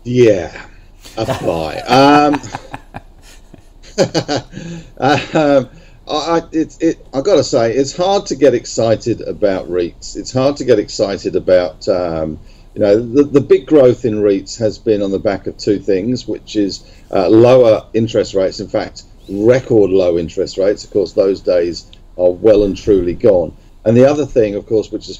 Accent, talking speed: British, 155 wpm